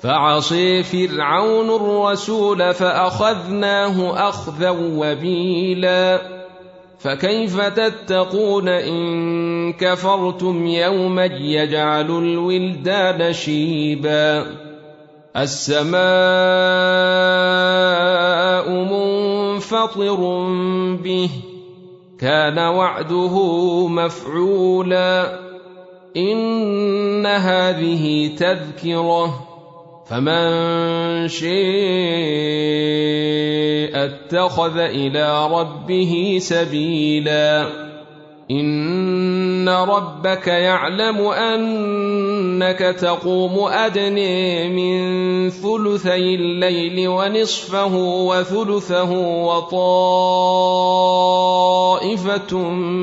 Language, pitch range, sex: Arabic, 170-185 Hz, male